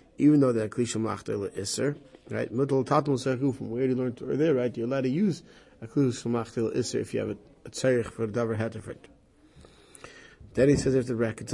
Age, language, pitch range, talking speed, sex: 30-49, English, 110-140 Hz, 190 wpm, male